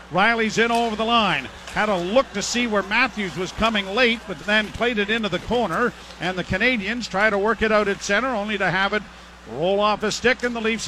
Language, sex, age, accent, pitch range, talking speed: English, male, 50-69, American, 205-240 Hz, 235 wpm